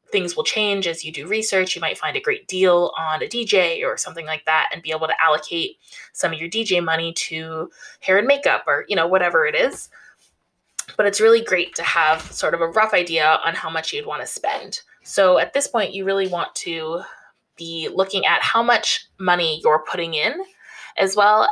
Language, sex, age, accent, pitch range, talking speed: English, female, 20-39, American, 165-235 Hz, 215 wpm